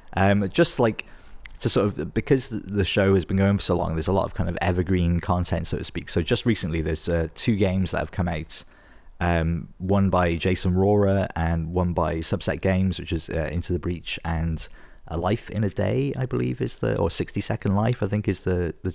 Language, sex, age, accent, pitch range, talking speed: English, male, 30-49, British, 85-100 Hz, 230 wpm